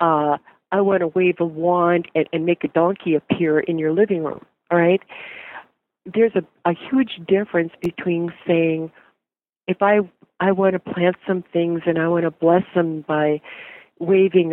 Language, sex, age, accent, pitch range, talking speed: English, female, 50-69, American, 150-180 Hz, 175 wpm